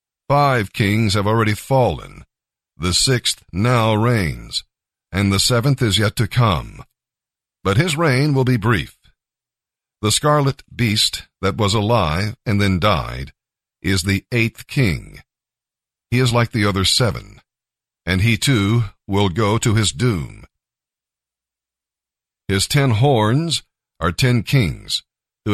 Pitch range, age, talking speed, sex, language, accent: 95-120 Hz, 50-69, 130 wpm, male, English, American